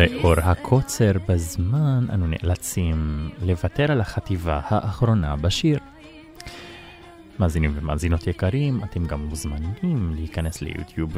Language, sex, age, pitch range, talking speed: Hebrew, male, 20-39, 90-120 Hz, 95 wpm